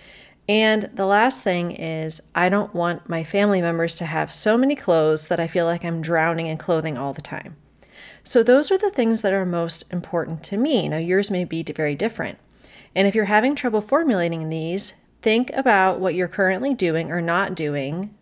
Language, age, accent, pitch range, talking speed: English, 30-49, American, 165-200 Hz, 200 wpm